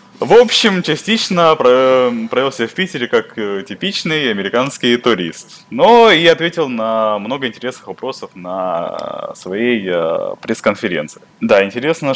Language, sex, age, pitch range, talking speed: English, male, 20-39, 90-120 Hz, 110 wpm